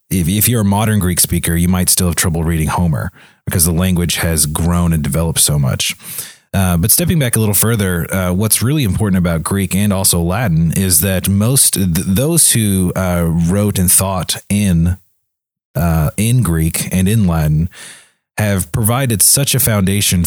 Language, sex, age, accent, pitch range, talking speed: English, male, 30-49, American, 85-95 Hz, 180 wpm